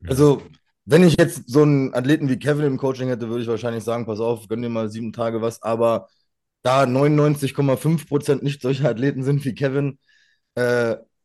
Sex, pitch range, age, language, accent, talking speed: male, 120-150 Hz, 20-39, German, German, 180 wpm